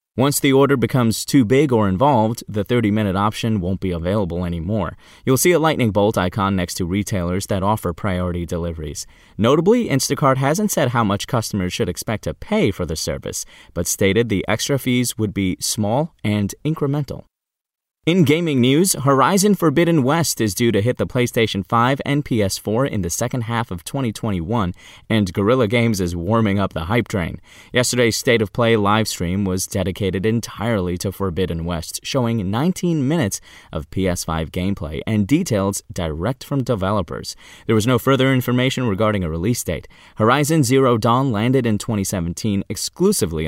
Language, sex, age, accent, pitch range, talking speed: English, male, 20-39, American, 95-125 Hz, 165 wpm